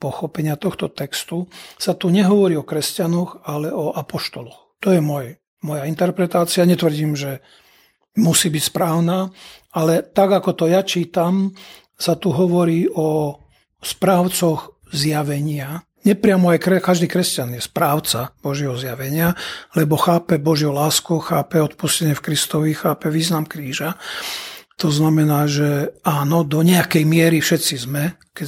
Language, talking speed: Slovak, 130 wpm